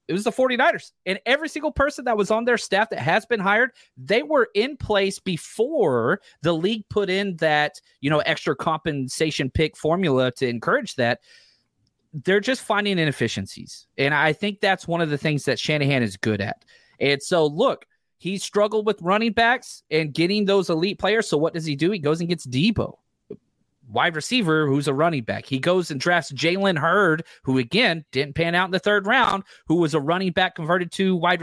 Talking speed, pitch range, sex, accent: 200 wpm, 155-200 Hz, male, American